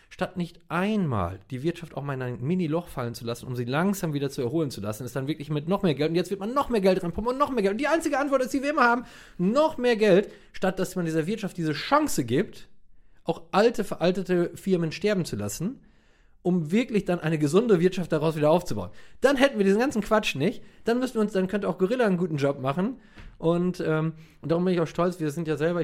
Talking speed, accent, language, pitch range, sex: 245 wpm, German, German, 125-180 Hz, male